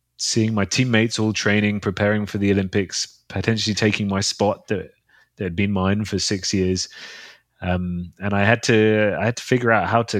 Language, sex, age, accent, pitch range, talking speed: English, male, 30-49, British, 90-110 Hz, 195 wpm